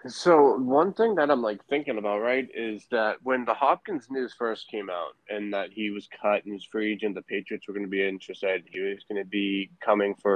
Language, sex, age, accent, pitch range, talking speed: English, male, 20-39, American, 100-115 Hz, 235 wpm